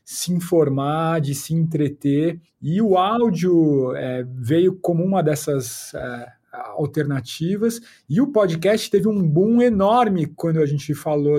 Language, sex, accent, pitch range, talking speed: Portuguese, male, Brazilian, 140-180 Hz, 135 wpm